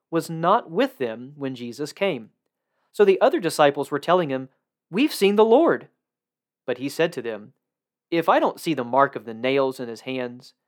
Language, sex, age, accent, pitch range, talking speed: English, male, 40-59, American, 125-170 Hz, 195 wpm